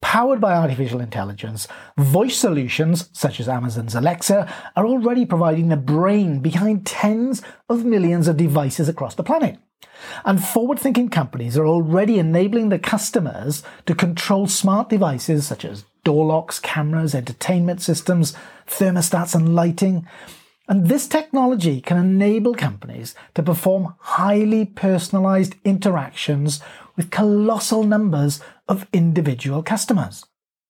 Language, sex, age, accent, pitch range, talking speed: English, male, 40-59, British, 150-200 Hz, 120 wpm